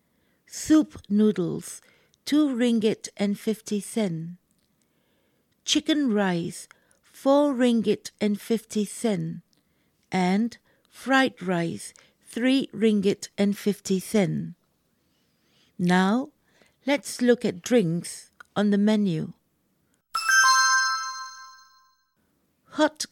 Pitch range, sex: 200-260 Hz, female